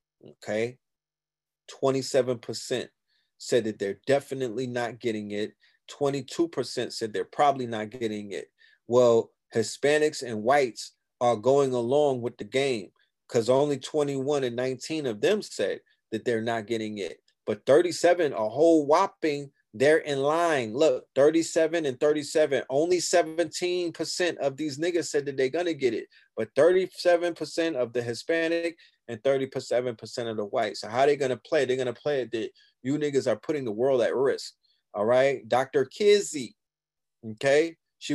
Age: 30-49